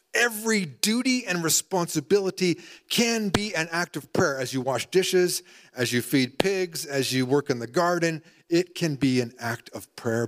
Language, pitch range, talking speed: English, 130-195 Hz, 180 wpm